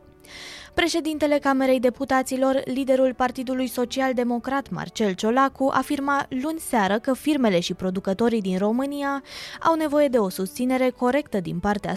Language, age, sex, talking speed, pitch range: Romanian, 20-39, female, 130 wpm, 215-275 Hz